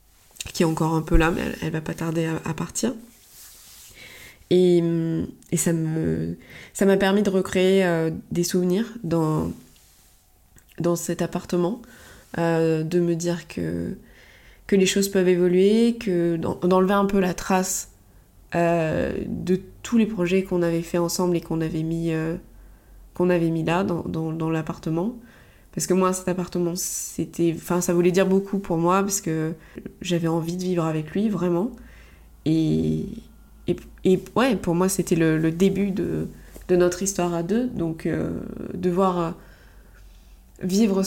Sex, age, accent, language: female, 20-39, French, French